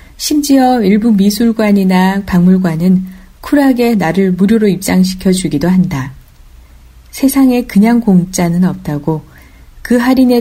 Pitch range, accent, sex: 170-215 Hz, native, female